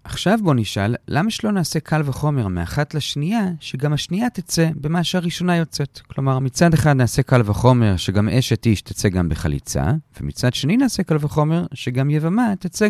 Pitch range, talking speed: 105-160 Hz, 165 wpm